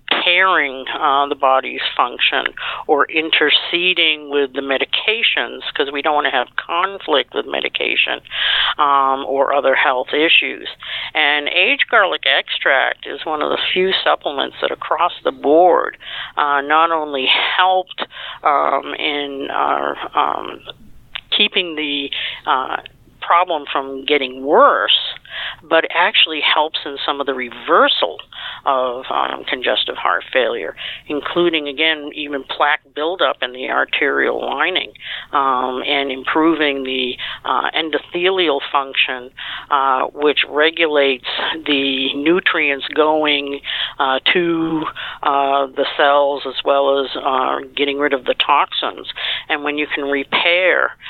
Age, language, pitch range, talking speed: 50-69, English, 140-160 Hz, 125 wpm